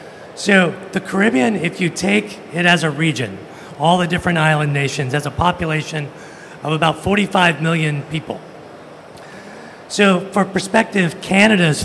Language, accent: English, American